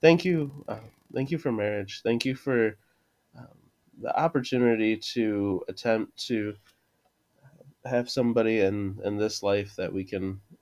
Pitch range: 95-115 Hz